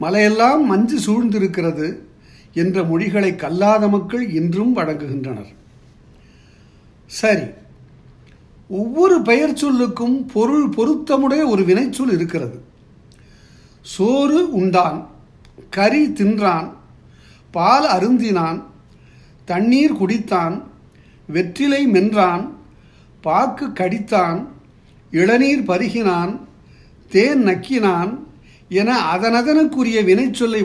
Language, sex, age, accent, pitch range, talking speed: Tamil, male, 50-69, native, 170-235 Hz, 75 wpm